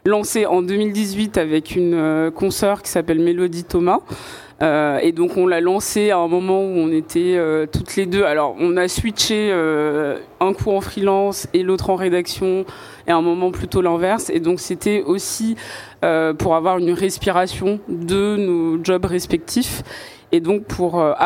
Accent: French